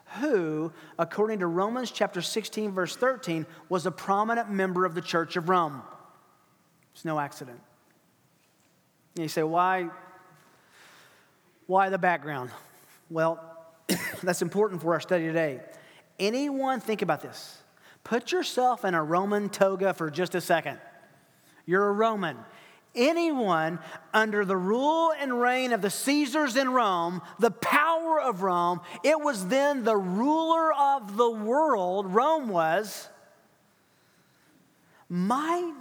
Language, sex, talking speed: English, male, 130 wpm